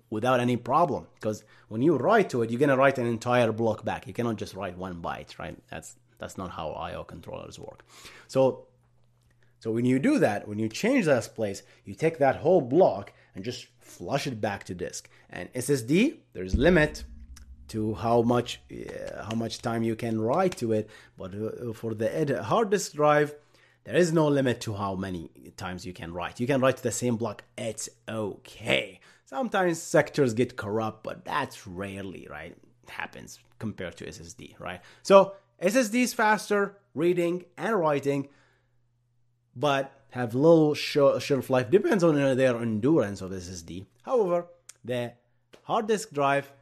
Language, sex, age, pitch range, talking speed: English, male, 30-49, 110-145 Hz, 170 wpm